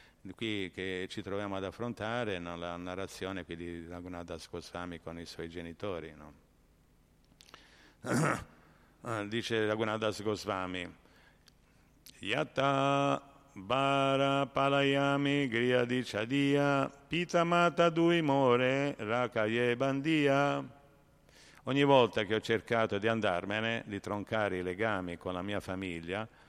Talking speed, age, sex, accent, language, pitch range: 95 wpm, 50-69, male, native, Italian, 95-140 Hz